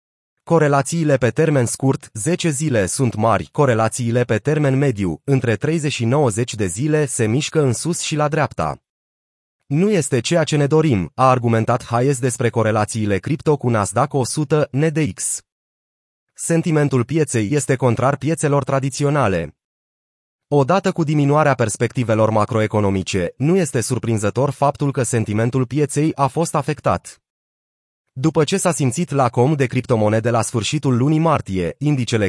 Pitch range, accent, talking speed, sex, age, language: 120-155 Hz, native, 140 wpm, male, 30-49, Romanian